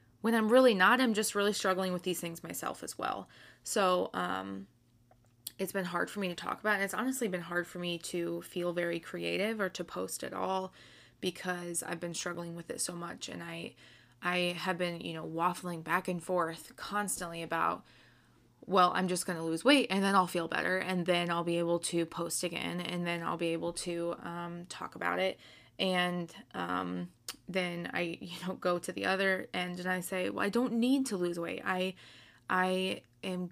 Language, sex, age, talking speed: English, female, 20-39, 210 wpm